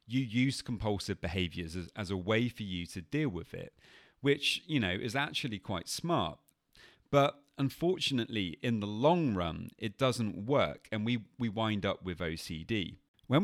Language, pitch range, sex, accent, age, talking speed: English, 90-130 Hz, male, British, 30-49, 165 wpm